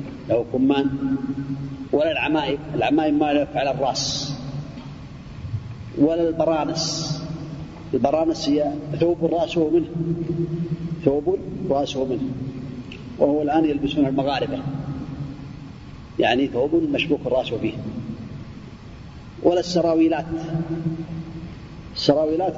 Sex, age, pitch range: male, 40-59, 140-170 Hz